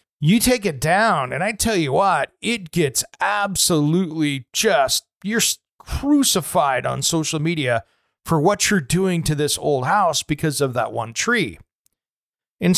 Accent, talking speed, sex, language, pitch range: American, 150 wpm, male, English, 150-215 Hz